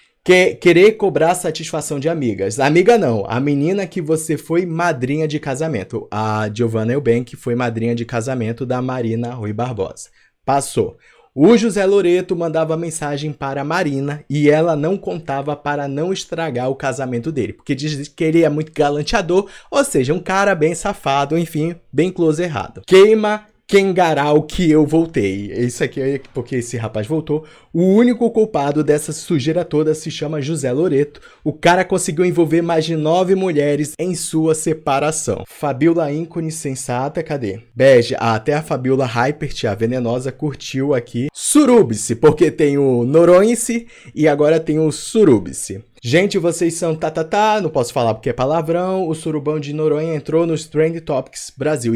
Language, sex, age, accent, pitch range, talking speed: Portuguese, male, 20-39, Brazilian, 135-165 Hz, 160 wpm